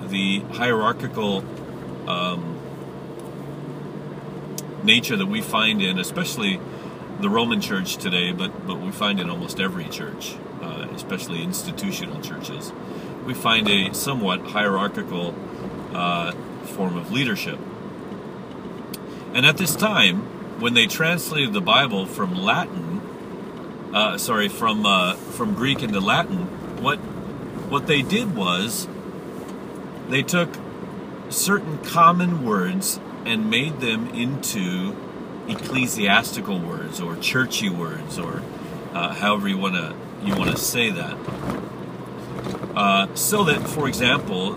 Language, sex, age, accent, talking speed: English, male, 40-59, American, 120 wpm